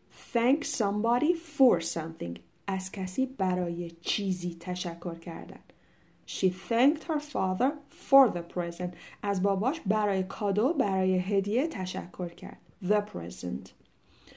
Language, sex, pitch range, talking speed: Persian, female, 185-255 Hz, 115 wpm